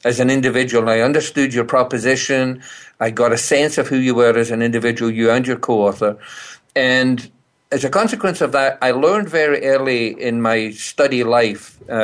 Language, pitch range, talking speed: English, 120-145 Hz, 180 wpm